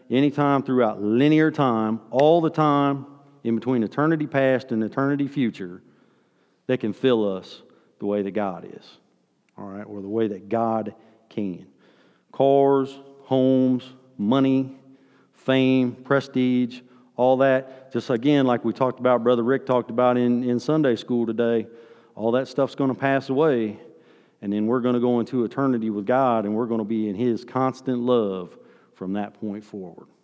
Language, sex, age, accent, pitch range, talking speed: English, male, 40-59, American, 110-130 Hz, 165 wpm